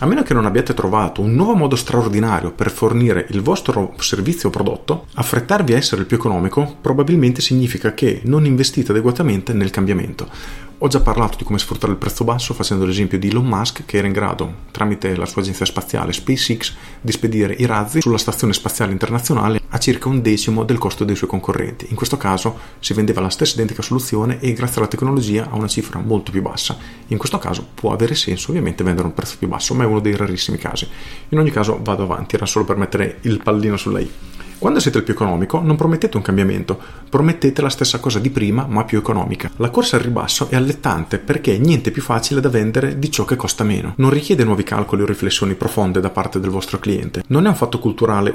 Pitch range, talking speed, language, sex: 100-130 Hz, 215 wpm, Italian, male